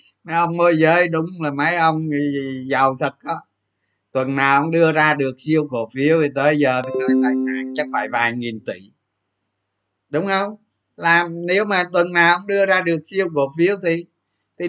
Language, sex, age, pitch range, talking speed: Vietnamese, male, 20-39, 125-175 Hz, 190 wpm